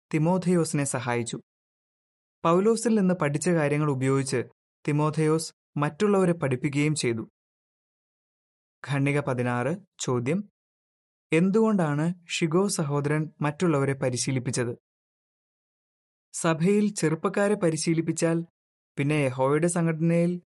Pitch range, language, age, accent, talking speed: 140-170 Hz, Malayalam, 20-39, native, 75 wpm